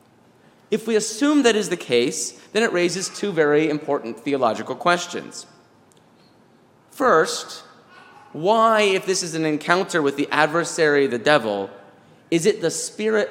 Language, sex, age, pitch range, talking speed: English, male, 30-49, 145-200 Hz, 140 wpm